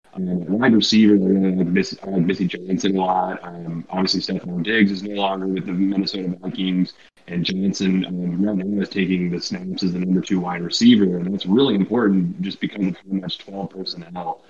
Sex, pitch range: male, 90-100 Hz